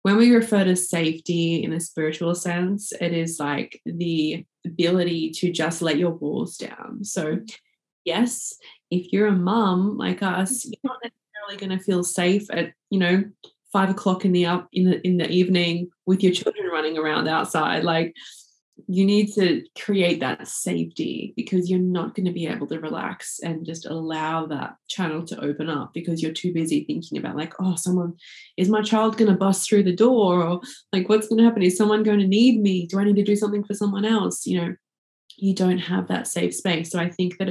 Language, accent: English, Australian